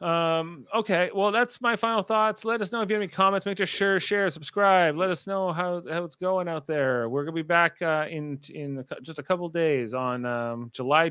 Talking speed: 230 wpm